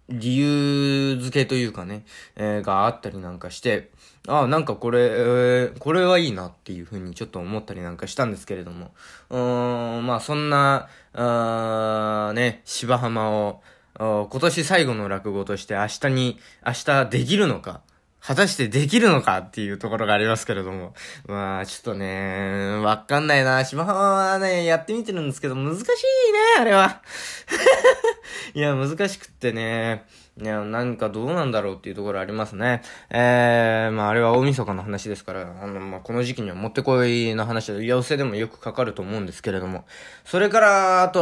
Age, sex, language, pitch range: 20-39, male, Japanese, 105-140 Hz